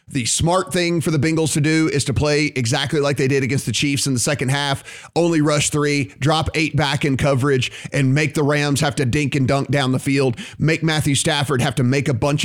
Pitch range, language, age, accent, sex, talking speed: 130-150 Hz, English, 30-49, American, male, 240 wpm